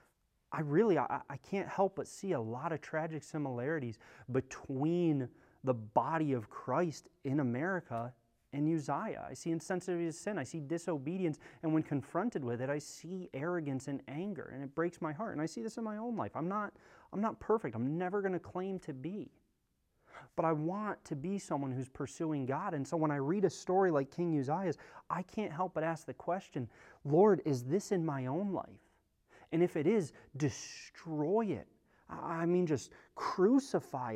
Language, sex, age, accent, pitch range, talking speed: English, male, 30-49, American, 140-190 Hz, 190 wpm